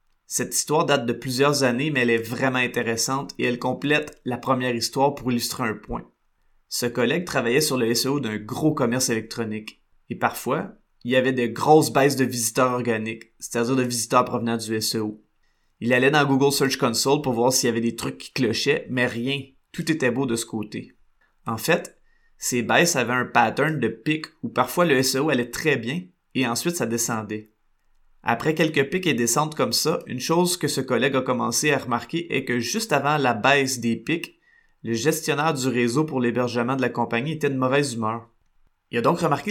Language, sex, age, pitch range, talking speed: French, male, 20-39, 120-145 Hz, 200 wpm